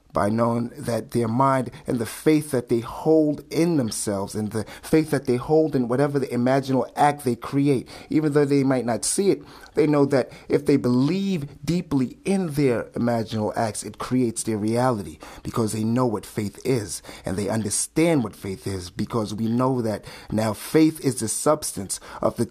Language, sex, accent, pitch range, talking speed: English, male, American, 115-145 Hz, 190 wpm